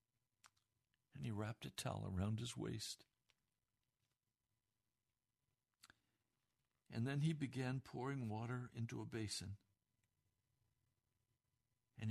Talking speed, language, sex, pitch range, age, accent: 90 wpm, English, male, 110-130 Hz, 60-79, American